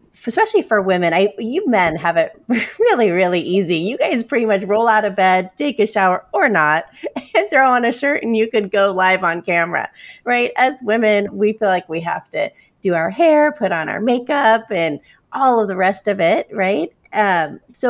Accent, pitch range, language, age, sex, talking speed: American, 175-220 Hz, English, 30-49, female, 210 wpm